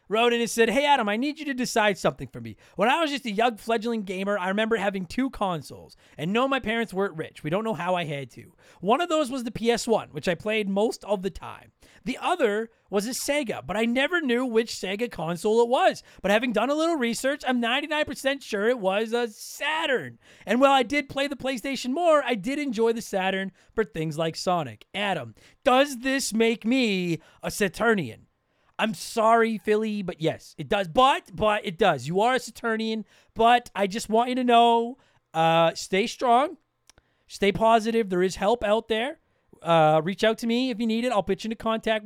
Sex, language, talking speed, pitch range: male, English, 215 wpm, 180-240 Hz